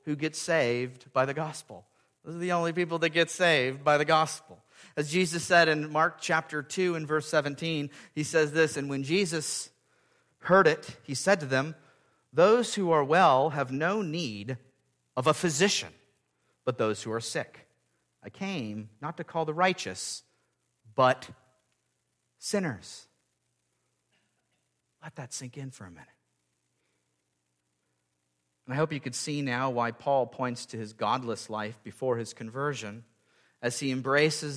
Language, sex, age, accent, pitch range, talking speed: English, male, 40-59, American, 115-150 Hz, 155 wpm